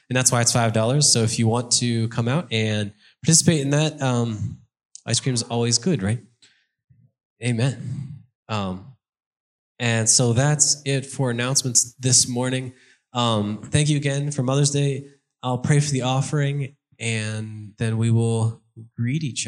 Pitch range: 115-135 Hz